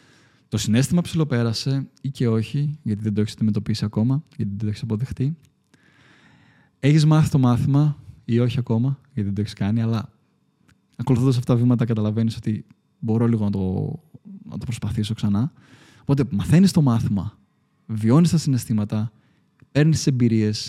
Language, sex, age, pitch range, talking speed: Greek, male, 20-39, 105-130 Hz, 155 wpm